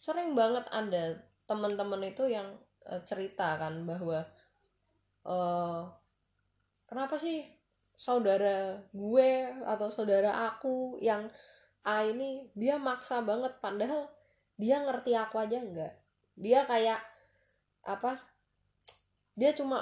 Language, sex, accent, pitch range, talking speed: Indonesian, female, native, 205-265 Hz, 110 wpm